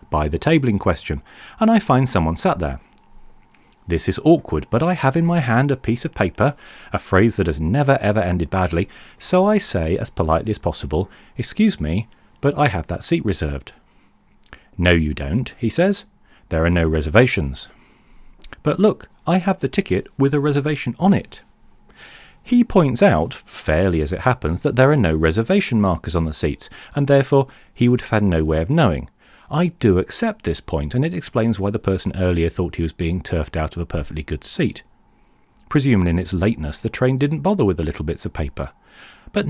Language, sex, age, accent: English, male, 40-59, British